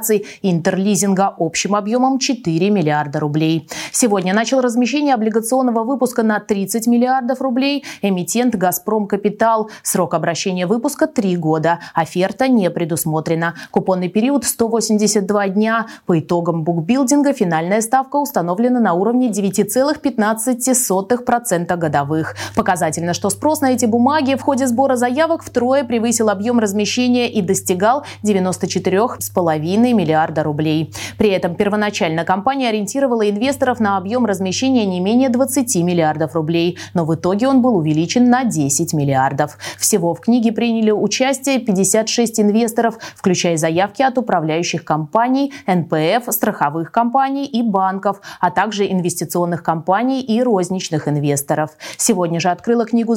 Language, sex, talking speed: Russian, female, 125 wpm